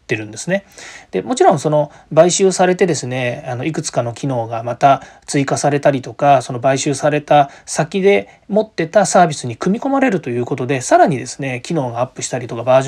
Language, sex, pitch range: Japanese, male, 135-200 Hz